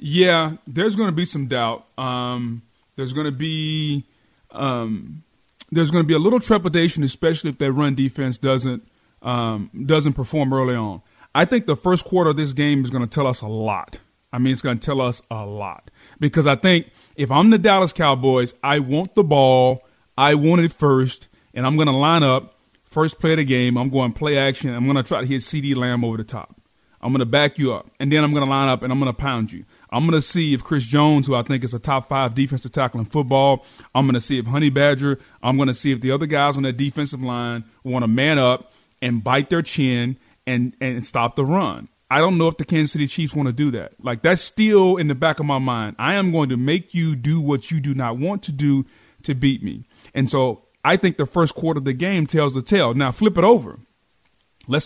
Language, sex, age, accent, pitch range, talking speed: English, male, 30-49, American, 125-155 Hz, 235 wpm